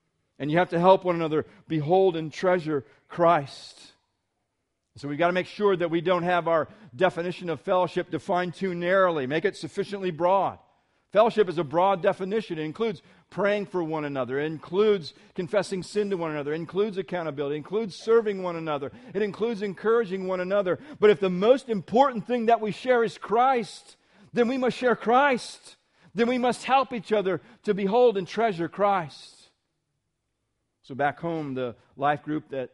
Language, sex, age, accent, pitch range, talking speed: English, male, 50-69, American, 135-190 Hz, 180 wpm